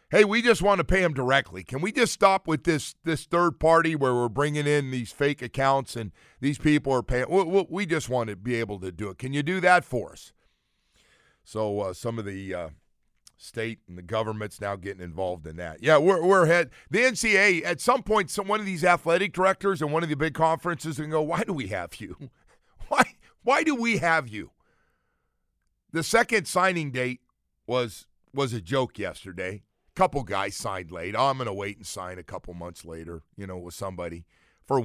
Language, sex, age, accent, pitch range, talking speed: English, male, 50-69, American, 105-165 Hz, 210 wpm